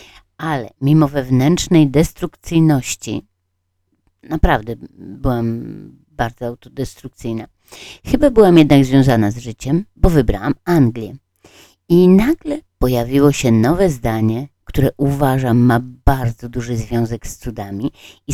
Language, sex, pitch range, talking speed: Polish, female, 115-150 Hz, 105 wpm